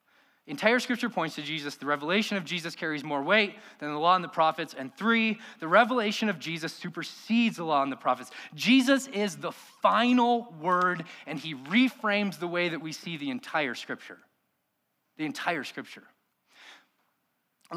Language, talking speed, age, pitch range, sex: English, 160 wpm, 20-39, 175-245 Hz, male